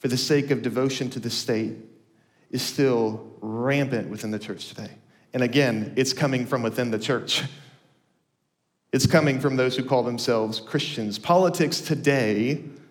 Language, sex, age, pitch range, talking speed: English, male, 40-59, 130-150 Hz, 155 wpm